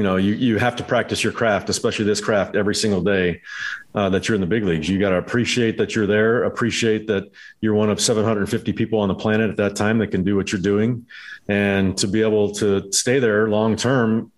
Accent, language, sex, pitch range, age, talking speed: American, English, male, 105-125 Hz, 40-59, 240 wpm